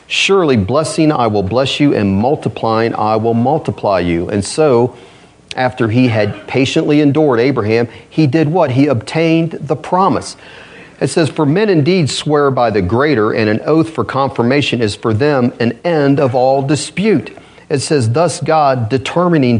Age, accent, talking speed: 40-59, American, 165 wpm